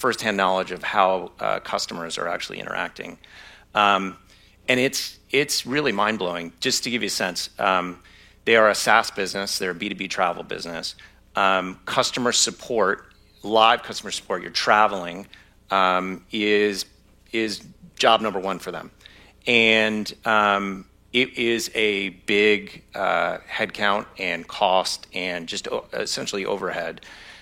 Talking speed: 140 wpm